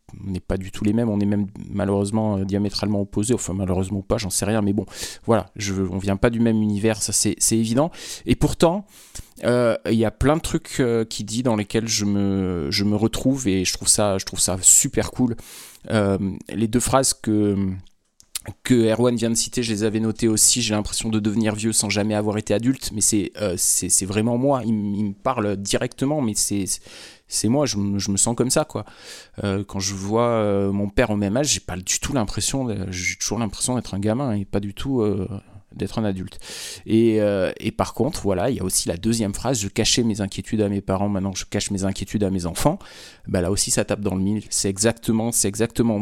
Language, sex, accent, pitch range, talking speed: French, male, French, 100-115 Hz, 235 wpm